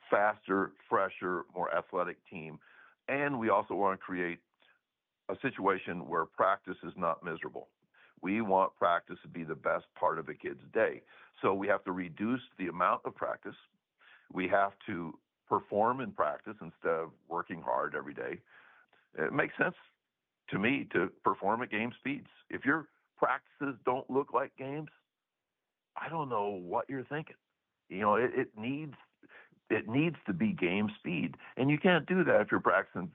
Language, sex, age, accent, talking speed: English, male, 60-79, American, 170 wpm